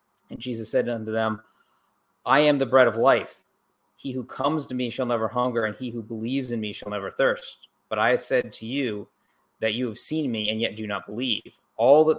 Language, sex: English, male